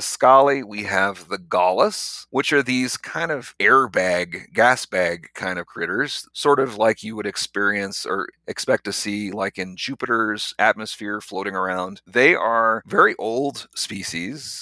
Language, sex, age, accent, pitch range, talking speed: English, male, 40-59, American, 95-125 Hz, 150 wpm